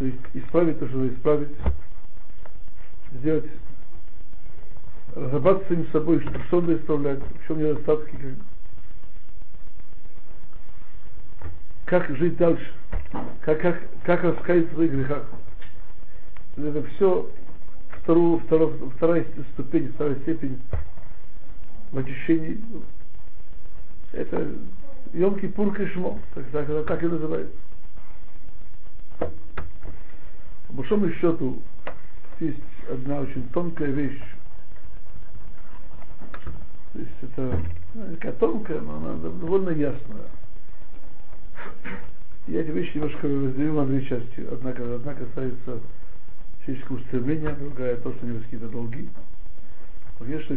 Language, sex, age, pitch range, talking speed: Russian, male, 60-79, 95-155 Hz, 95 wpm